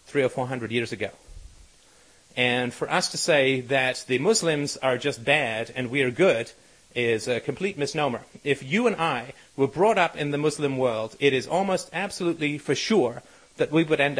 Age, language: 30-49, English